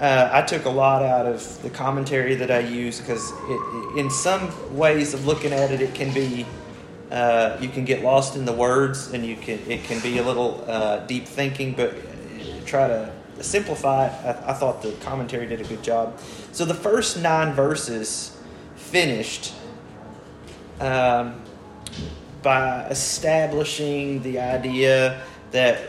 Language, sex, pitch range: English, male, 115-140 Hz